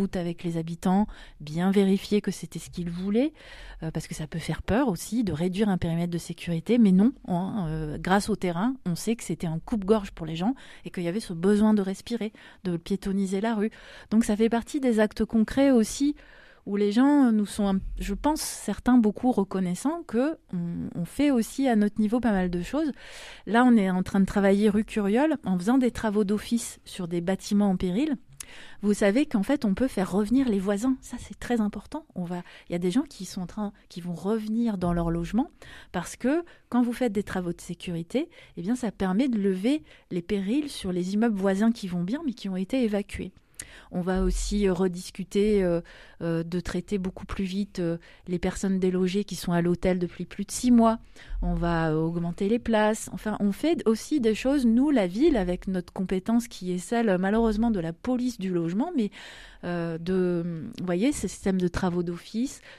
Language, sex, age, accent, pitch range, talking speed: French, female, 30-49, French, 180-230 Hz, 205 wpm